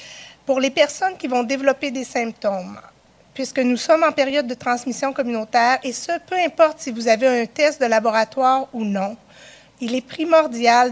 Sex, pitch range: female, 230-275 Hz